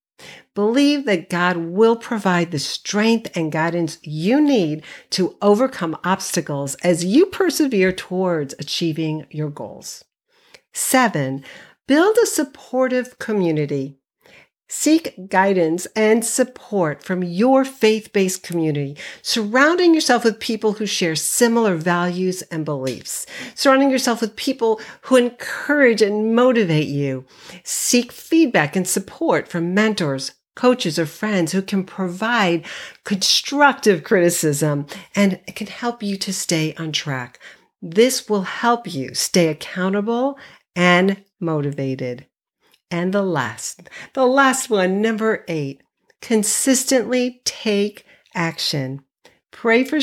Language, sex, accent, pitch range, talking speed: English, female, American, 165-235 Hz, 115 wpm